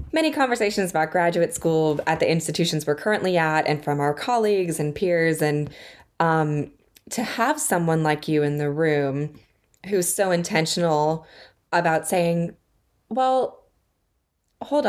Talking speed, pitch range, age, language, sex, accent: 135 wpm, 150-175 Hz, 20-39, English, female, American